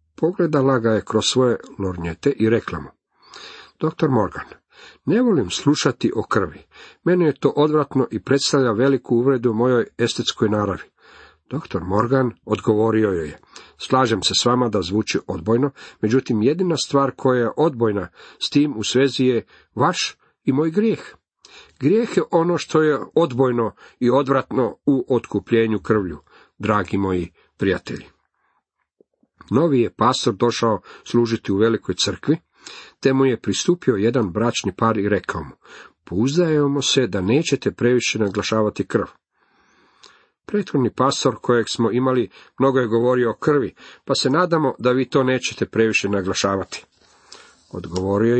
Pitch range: 105-135 Hz